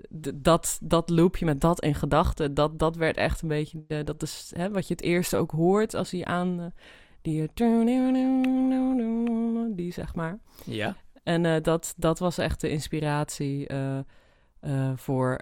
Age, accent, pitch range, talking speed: 20-39, Dutch, 145-175 Hz, 135 wpm